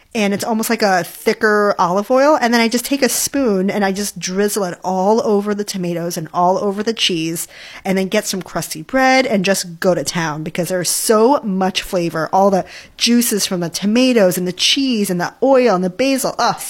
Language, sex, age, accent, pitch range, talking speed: English, female, 30-49, American, 180-235 Hz, 220 wpm